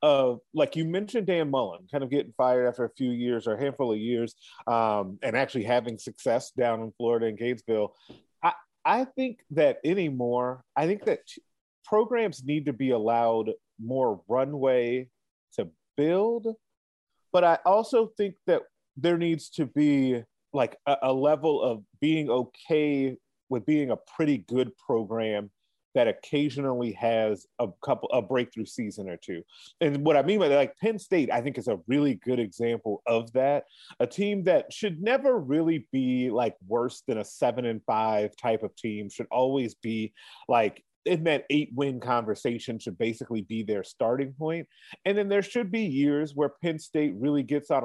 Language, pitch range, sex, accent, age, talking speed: English, 115-160 Hz, male, American, 40-59, 175 wpm